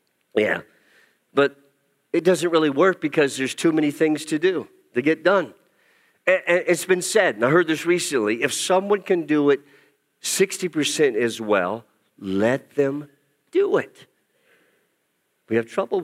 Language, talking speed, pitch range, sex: English, 145 wpm, 160-220 Hz, male